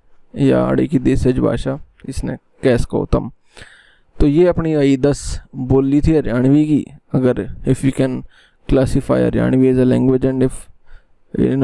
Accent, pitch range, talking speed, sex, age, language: native, 125-155 Hz, 155 wpm, male, 20-39, Hindi